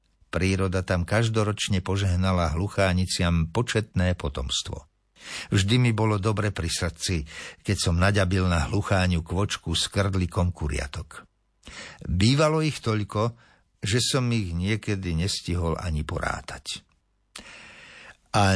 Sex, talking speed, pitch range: male, 105 wpm, 85-110 Hz